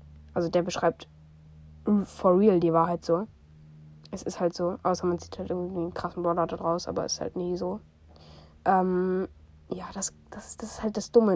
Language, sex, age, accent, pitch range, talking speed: German, female, 20-39, German, 165-210 Hz, 195 wpm